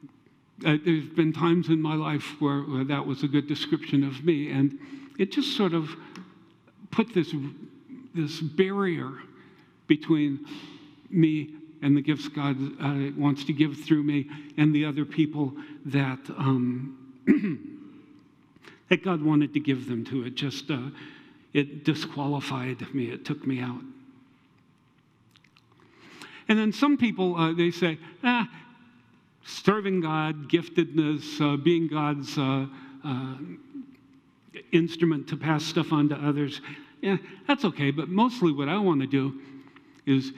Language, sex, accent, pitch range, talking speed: English, male, American, 140-175 Hz, 140 wpm